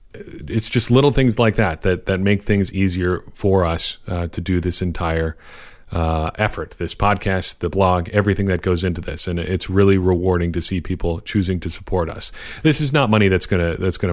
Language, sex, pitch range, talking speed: English, male, 85-105 Hz, 205 wpm